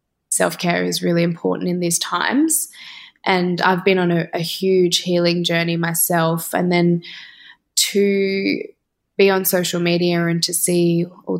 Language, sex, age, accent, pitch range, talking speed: English, female, 10-29, Australian, 170-185 Hz, 145 wpm